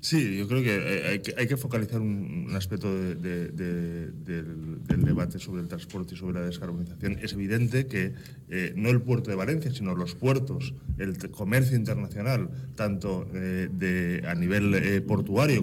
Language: Spanish